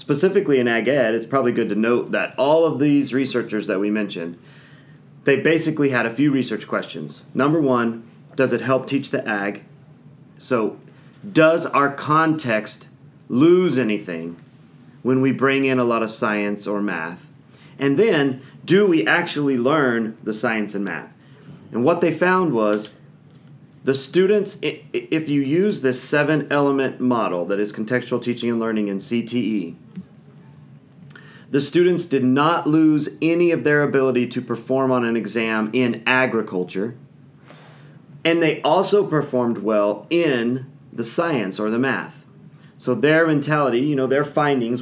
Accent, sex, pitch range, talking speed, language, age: American, male, 115-150 Hz, 150 wpm, English, 30-49